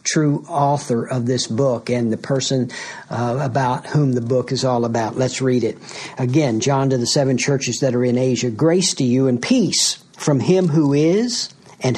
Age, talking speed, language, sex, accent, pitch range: 60-79, 195 wpm, English, male, American, 125-145 Hz